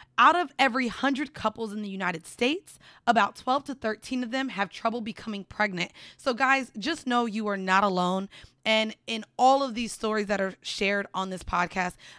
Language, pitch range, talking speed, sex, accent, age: English, 205-255 Hz, 190 wpm, female, American, 20-39